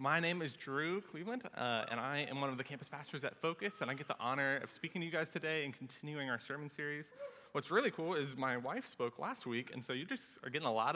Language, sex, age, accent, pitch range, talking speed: English, male, 20-39, American, 125-160 Hz, 270 wpm